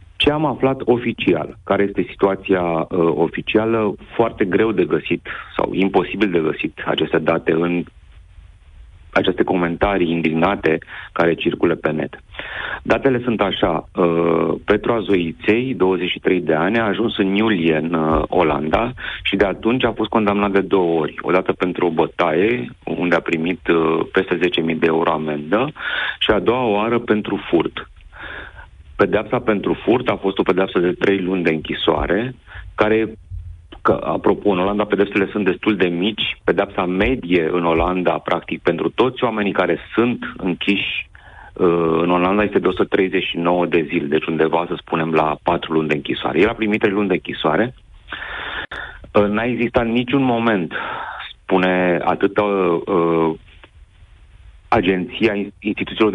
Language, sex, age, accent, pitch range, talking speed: Romanian, male, 40-59, native, 85-105 Hz, 145 wpm